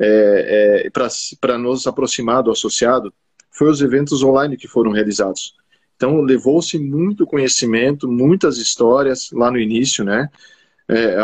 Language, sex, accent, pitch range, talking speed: Portuguese, male, Brazilian, 110-130 Hz, 135 wpm